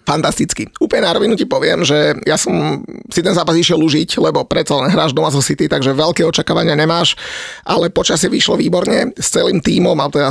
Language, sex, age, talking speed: Slovak, male, 30-49, 190 wpm